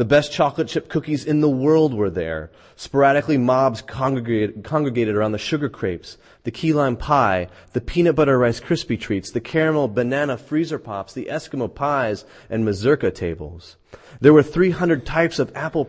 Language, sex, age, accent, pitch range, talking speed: English, male, 30-49, American, 105-150 Hz, 165 wpm